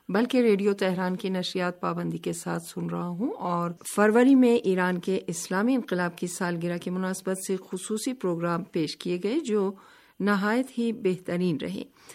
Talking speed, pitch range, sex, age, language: 165 wpm, 175-215 Hz, female, 50-69, Urdu